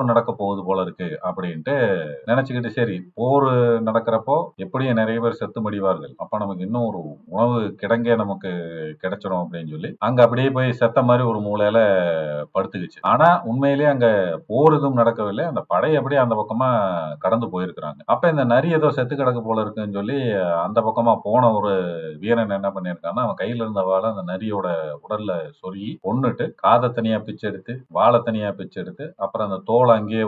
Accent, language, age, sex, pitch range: native, Tamil, 40-59, male, 95-125 Hz